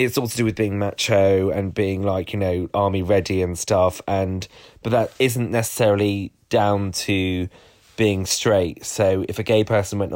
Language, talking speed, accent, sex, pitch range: English, 185 wpm, British, male, 95-115 Hz